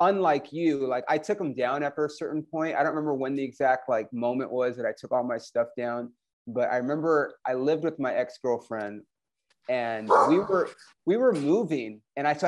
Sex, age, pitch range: male, 30-49, 135-170 Hz